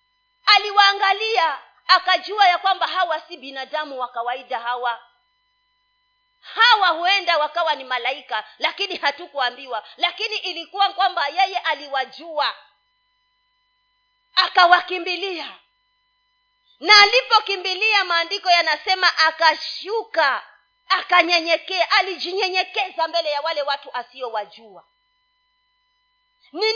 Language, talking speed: Swahili, 80 wpm